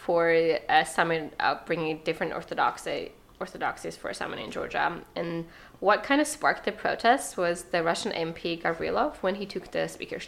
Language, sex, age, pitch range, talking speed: English, female, 20-39, 170-200 Hz, 170 wpm